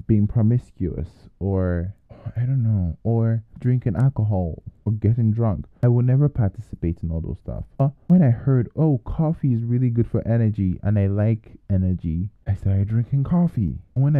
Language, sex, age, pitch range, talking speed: English, male, 20-39, 90-120 Hz, 170 wpm